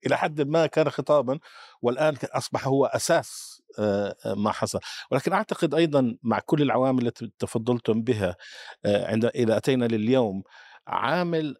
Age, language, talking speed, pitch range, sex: 50-69, Arabic, 125 wpm, 110-145 Hz, male